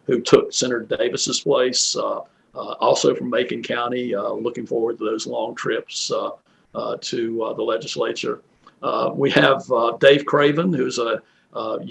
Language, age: English, 50-69